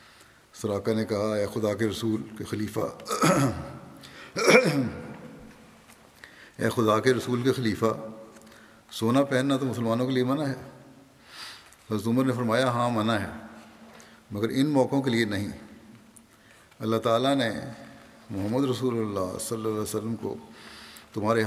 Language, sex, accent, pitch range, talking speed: English, male, Indian, 105-120 Hz, 125 wpm